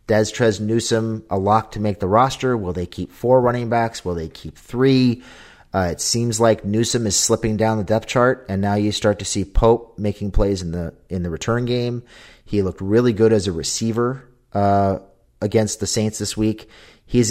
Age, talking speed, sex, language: 30-49, 205 wpm, male, English